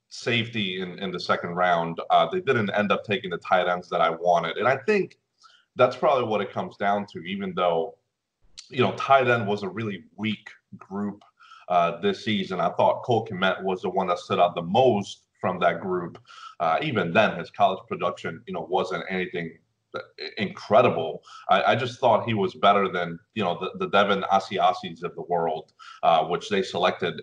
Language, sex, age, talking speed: English, male, 30-49, 195 wpm